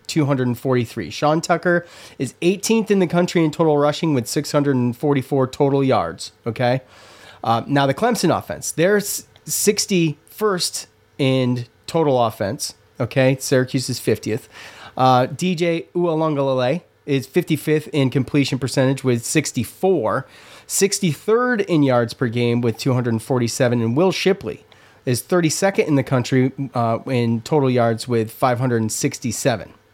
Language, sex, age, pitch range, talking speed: English, male, 30-49, 115-150 Hz, 120 wpm